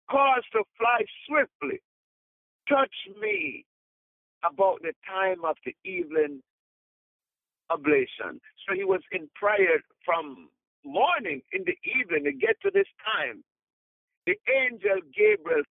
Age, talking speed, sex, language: 50-69, 120 wpm, male, English